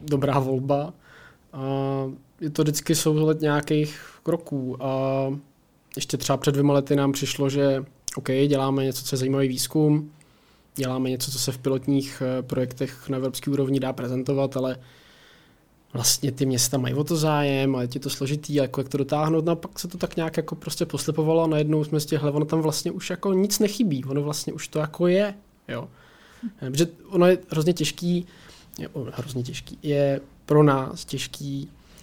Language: Czech